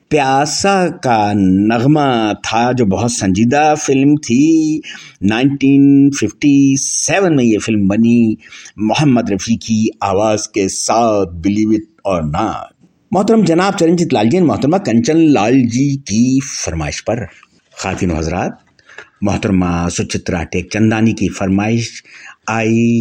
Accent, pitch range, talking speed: Indian, 105-145 Hz, 115 wpm